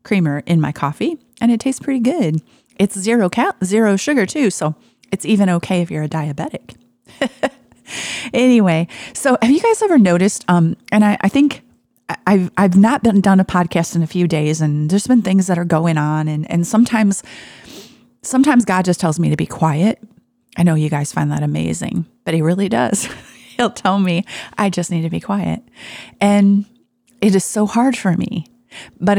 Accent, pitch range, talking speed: American, 160-215 Hz, 190 wpm